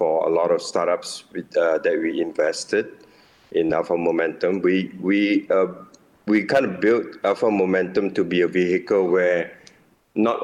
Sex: male